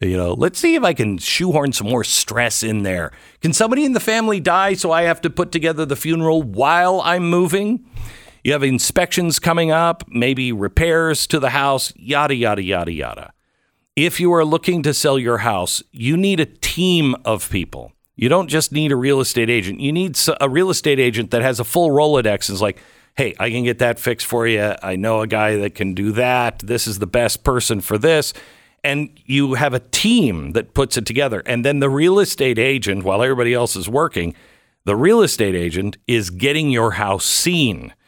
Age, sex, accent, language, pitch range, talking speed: 50-69, male, American, English, 105-150 Hz, 205 wpm